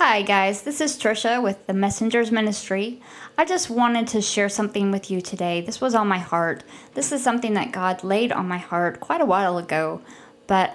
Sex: female